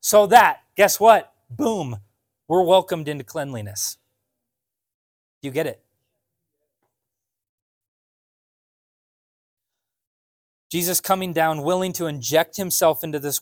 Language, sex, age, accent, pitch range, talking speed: English, male, 20-39, American, 105-140 Hz, 95 wpm